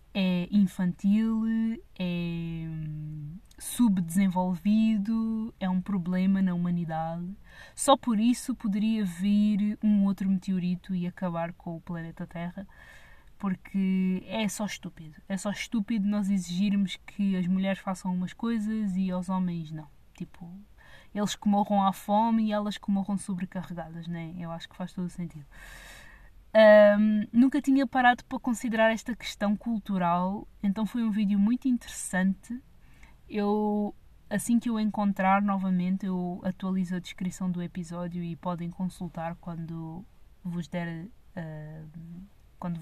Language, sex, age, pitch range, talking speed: Portuguese, female, 20-39, 175-215 Hz, 125 wpm